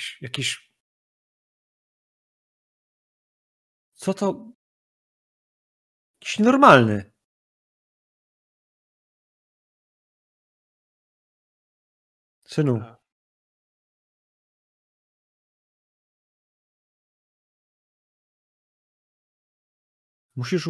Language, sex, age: Polish, male, 40-59